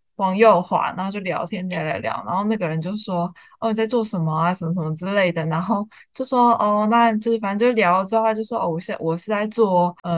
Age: 20-39